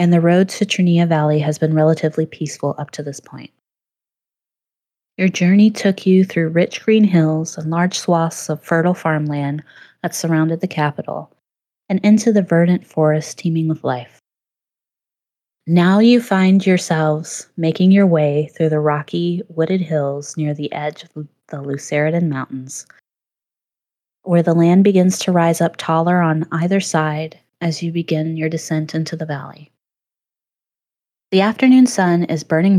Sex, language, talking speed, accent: female, English, 150 wpm, American